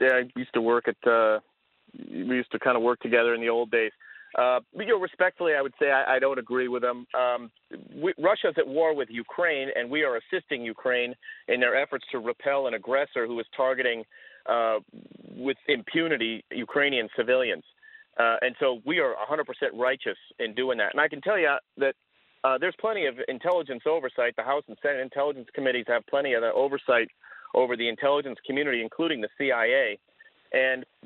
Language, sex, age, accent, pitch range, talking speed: English, male, 40-59, American, 125-180 Hz, 195 wpm